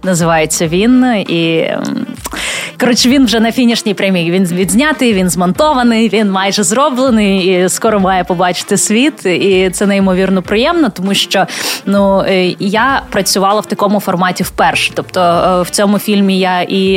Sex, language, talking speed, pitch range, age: female, Ukrainian, 140 wpm, 185-220 Hz, 20-39